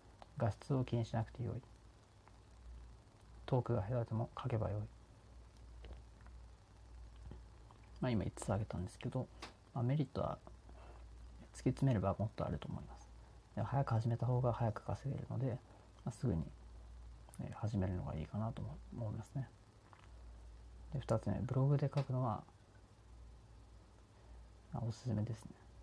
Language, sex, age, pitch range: Japanese, male, 30-49, 100-125 Hz